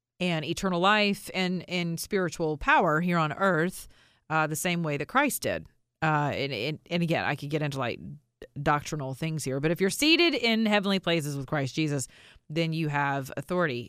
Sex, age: female, 40-59